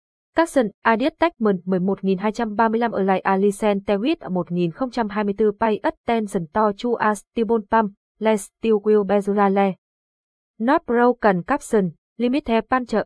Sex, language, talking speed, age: female, English, 110 wpm, 20-39